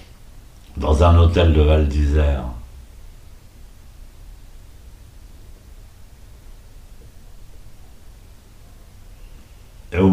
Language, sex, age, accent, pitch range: French, male, 60-79, French, 75-95 Hz